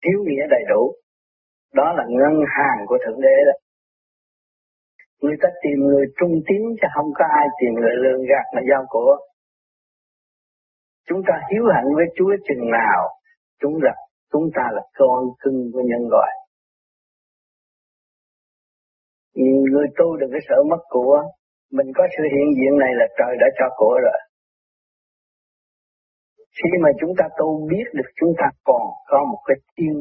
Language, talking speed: Vietnamese, 160 wpm